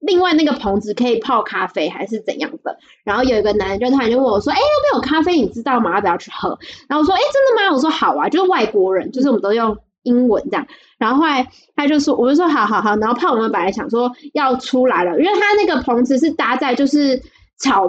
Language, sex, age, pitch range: Chinese, female, 20-39, 235-305 Hz